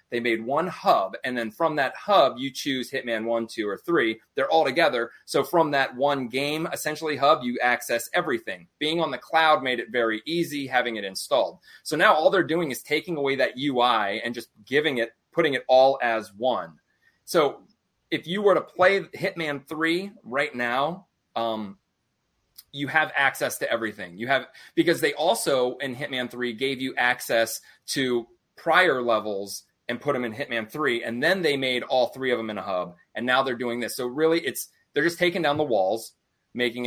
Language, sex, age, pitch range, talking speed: English, male, 30-49, 115-150 Hz, 195 wpm